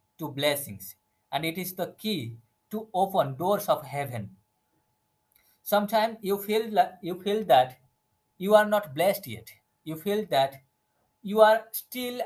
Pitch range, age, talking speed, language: 120-200 Hz, 50-69, 130 wpm, English